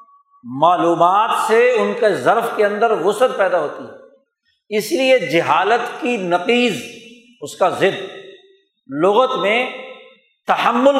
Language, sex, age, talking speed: Urdu, male, 50-69, 120 wpm